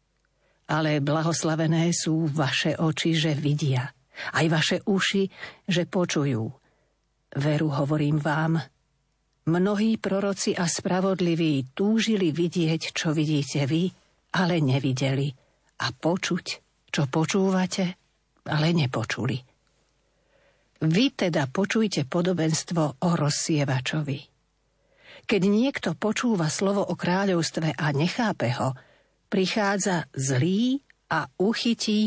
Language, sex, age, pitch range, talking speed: Slovak, female, 50-69, 150-195 Hz, 95 wpm